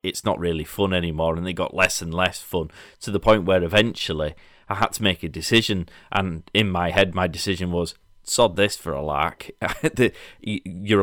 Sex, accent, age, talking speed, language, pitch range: male, British, 30-49, 195 wpm, English, 90-105 Hz